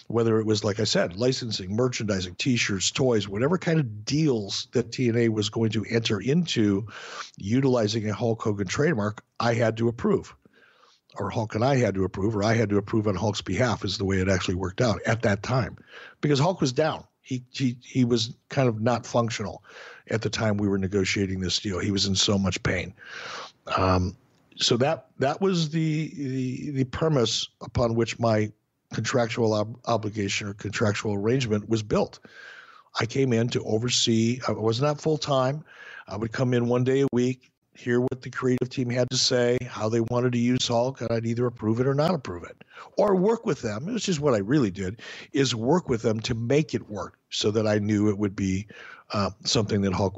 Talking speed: 205 wpm